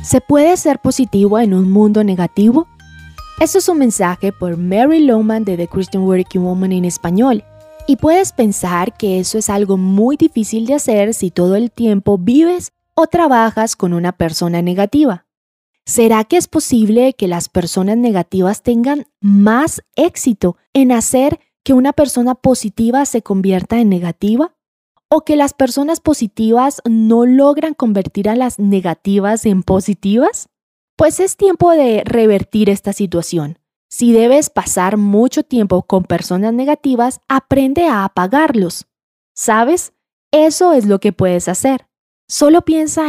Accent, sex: Colombian, female